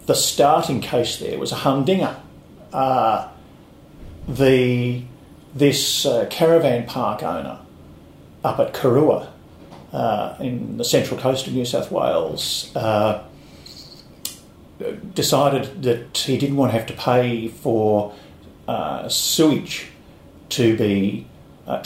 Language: English